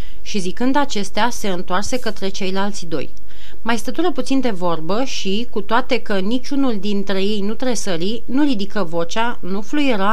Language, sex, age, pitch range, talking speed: Romanian, female, 30-49, 195-255 Hz, 160 wpm